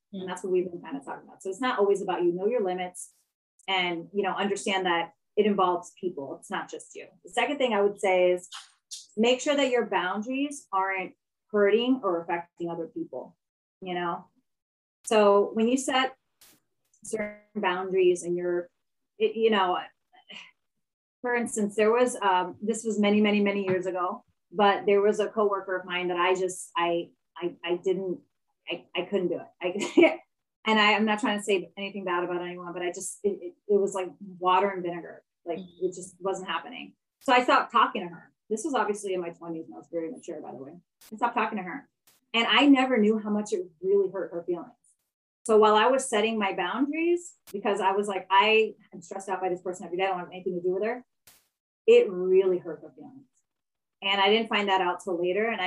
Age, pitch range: 30-49, 180-220 Hz